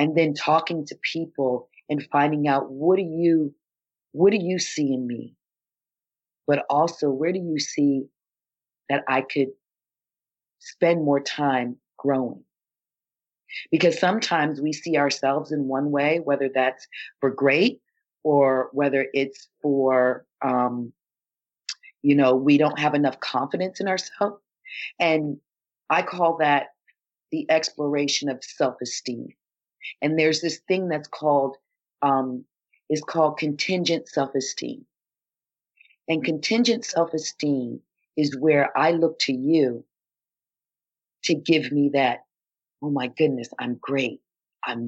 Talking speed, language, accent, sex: 125 wpm, English, American, female